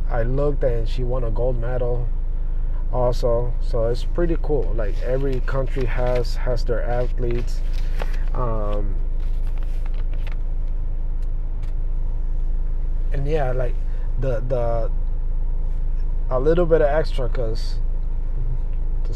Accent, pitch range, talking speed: American, 80-125 Hz, 105 wpm